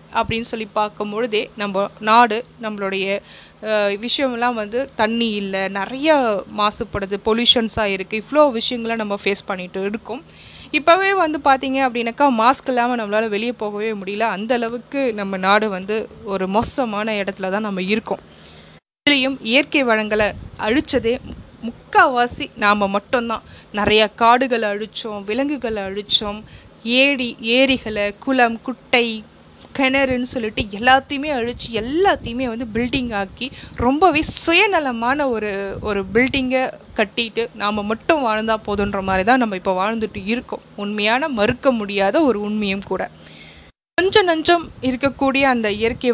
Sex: female